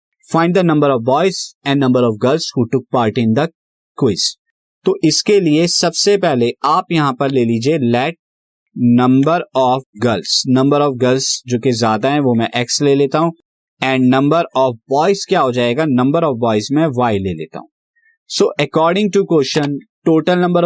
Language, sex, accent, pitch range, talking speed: Hindi, male, native, 125-165 Hz, 170 wpm